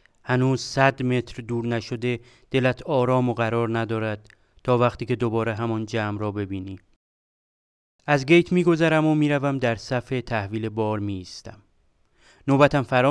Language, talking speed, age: English, 140 wpm, 30-49